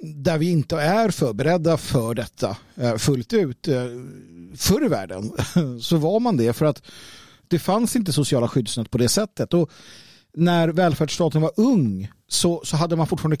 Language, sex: Swedish, male